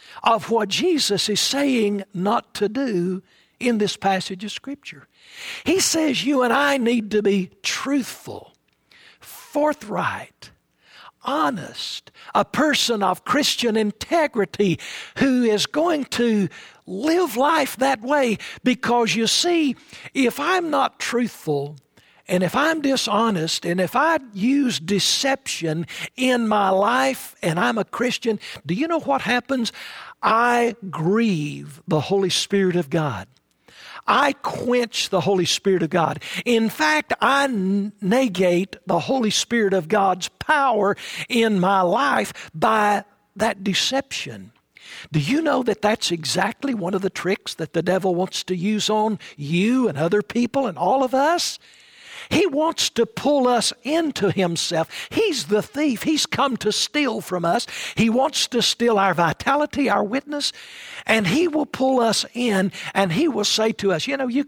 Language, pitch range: English, 190-270 Hz